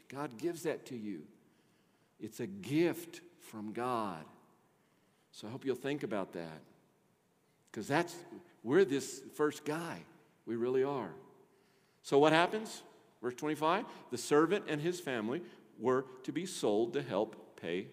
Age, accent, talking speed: 50-69, American, 145 wpm